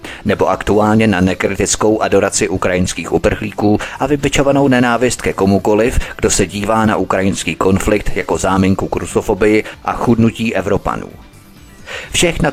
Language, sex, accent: Czech, male, native